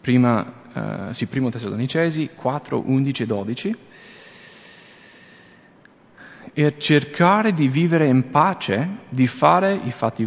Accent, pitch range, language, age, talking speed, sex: Italian, 110-145 Hz, English, 30-49, 105 wpm, male